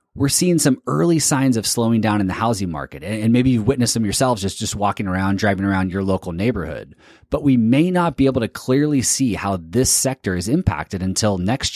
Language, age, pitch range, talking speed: English, 30-49, 100-135 Hz, 220 wpm